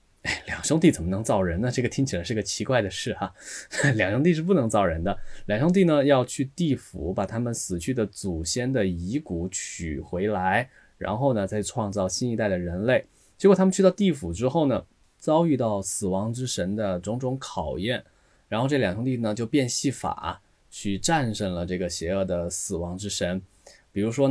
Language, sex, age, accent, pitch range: Chinese, male, 20-39, native, 95-130 Hz